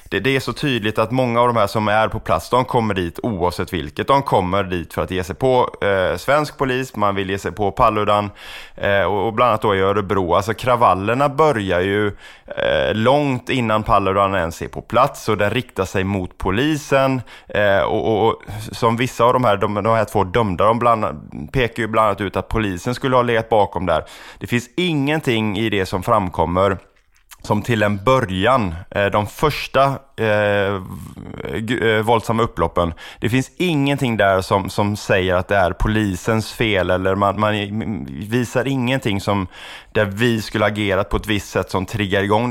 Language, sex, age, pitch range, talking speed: Swedish, male, 20-39, 95-120 Hz, 190 wpm